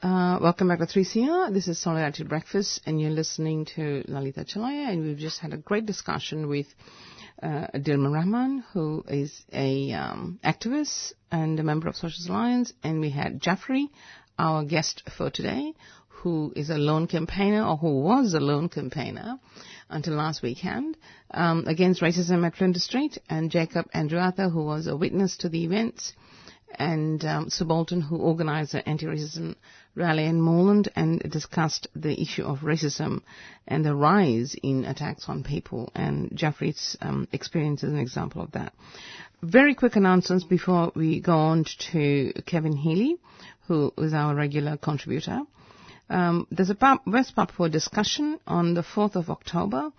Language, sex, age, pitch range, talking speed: English, female, 50-69, 155-195 Hz, 165 wpm